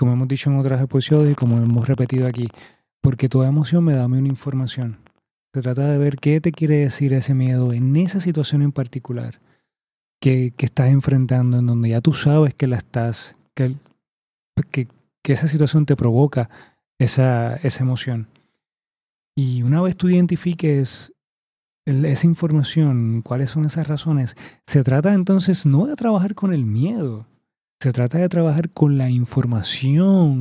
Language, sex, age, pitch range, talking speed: Spanish, male, 30-49, 125-150 Hz, 165 wpm